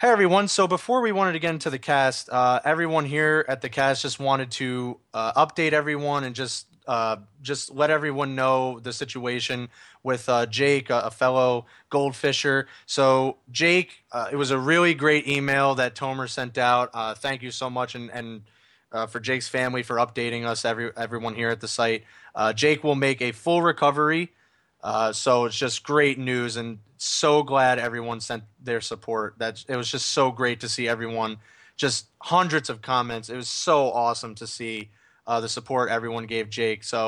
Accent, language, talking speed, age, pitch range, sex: American, English, 190 wpm, 20-39, 115-140 Hz, male